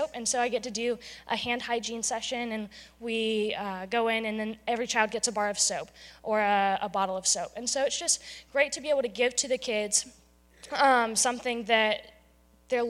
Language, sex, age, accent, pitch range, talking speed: English, female, 10-29, American, 210-245 Hz, 220 wpm